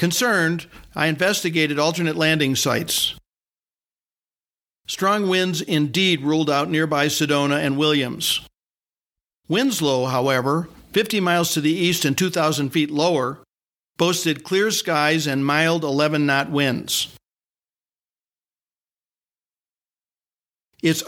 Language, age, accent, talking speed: English, 50-69, American, 95 wpm